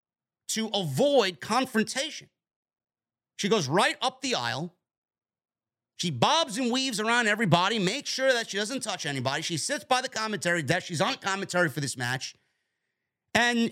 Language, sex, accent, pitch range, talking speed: English, male, American, 160-255 Hz, 155 wpm